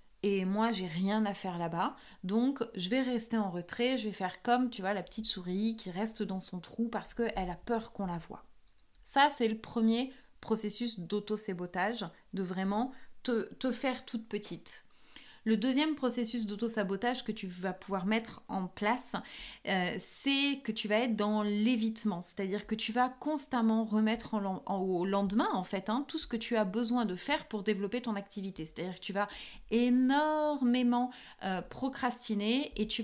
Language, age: French, 30-49